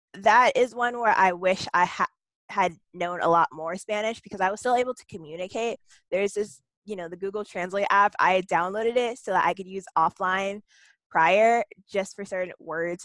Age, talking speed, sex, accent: 10-29, 195 wpm, female, American